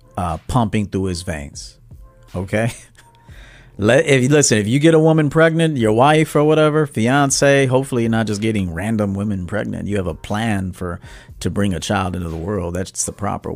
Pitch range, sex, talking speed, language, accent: 105-140 Hz, male, 185 wpm, English, American